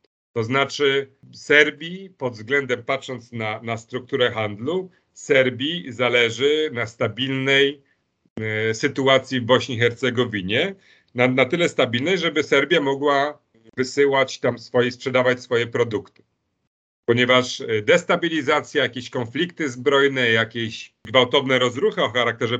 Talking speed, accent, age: 110 wpm, native, 40-59